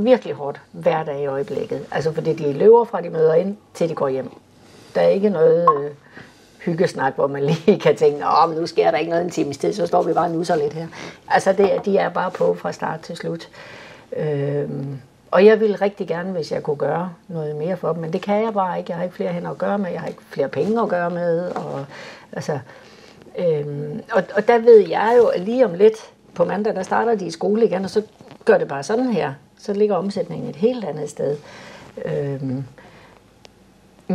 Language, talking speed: Danish, 225 wpm